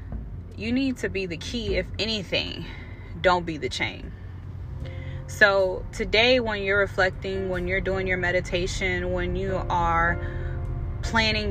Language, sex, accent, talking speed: English, female, American, 135 wpm